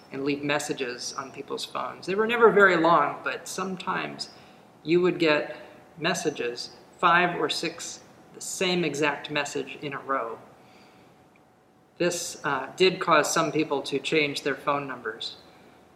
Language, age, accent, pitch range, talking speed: English, 40-59, American, 145-170 Hz, 145 wpm